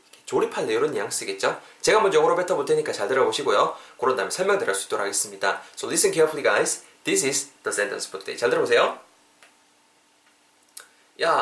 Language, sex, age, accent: Korean, male, 20-39, native